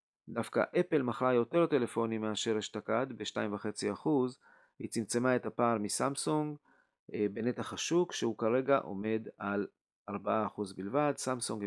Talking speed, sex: 115 wpm, male